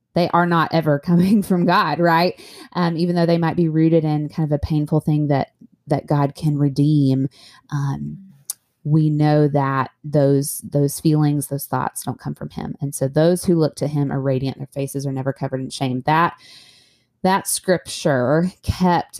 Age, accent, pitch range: 20-39, American, 140-165 Hz